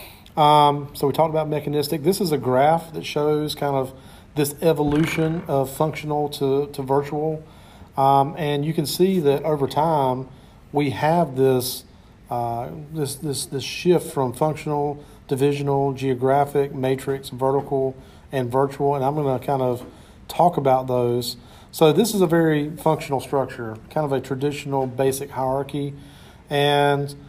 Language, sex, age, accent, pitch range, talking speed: English, male, 40-59, American, 135-155 Hz, 150 wpm